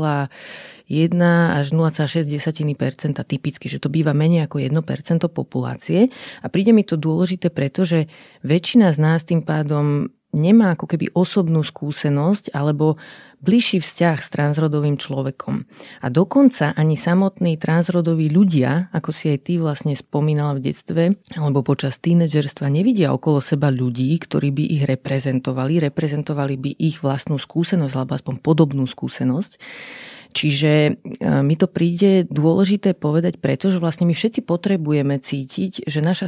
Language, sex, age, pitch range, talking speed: Slovak, female, 30-49, 145-180 Hz, 135 wpm